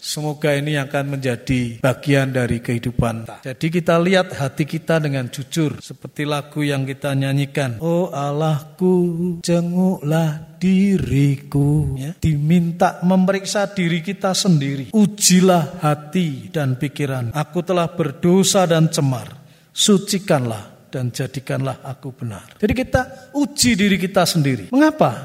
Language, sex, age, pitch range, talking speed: Indonesian, male, 50-69, 145-200 Hz, 115 wpm